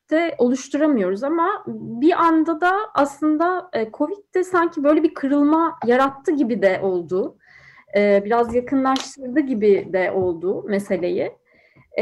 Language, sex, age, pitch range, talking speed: Turkish, female, 30-49, 205-300 Hz, 110 wpm